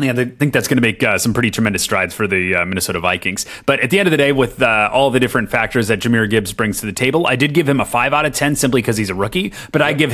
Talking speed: 315 wpm